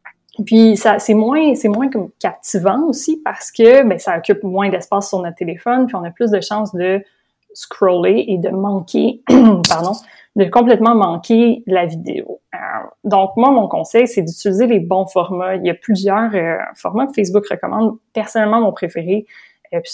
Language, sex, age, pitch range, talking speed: French, female, 30-49, 180-215 Hz, 180 wpm